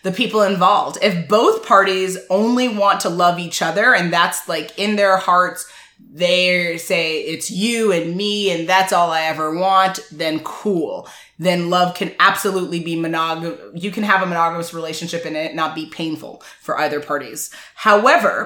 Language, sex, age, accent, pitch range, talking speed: English, female, 20-39, American, 170-215 Hz, 170 wpm